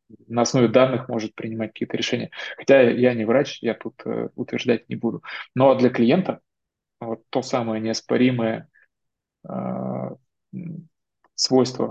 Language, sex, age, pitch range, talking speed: Russian, male, 20-39, 110-125 Hz, 130 wpm